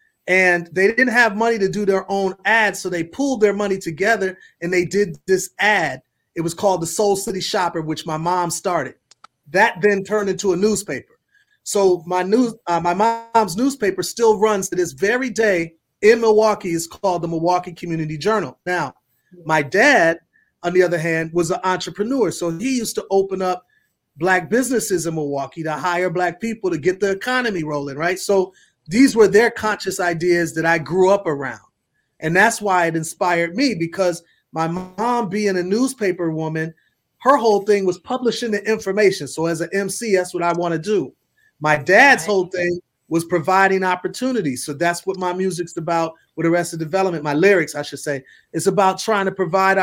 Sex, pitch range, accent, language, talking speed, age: male, 170-205 Hz, American, English, 185 wpm, 30-49